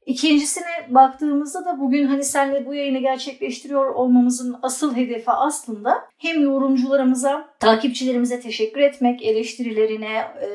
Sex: female